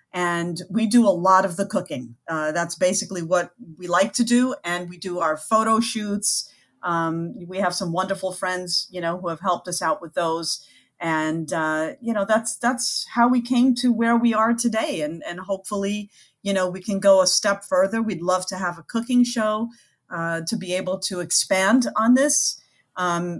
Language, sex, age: English, female, 40-59